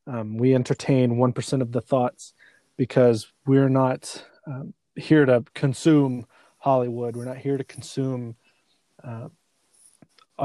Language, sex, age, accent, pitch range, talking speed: English, male, 20-39, American, 120-145 Hz, 125 wpm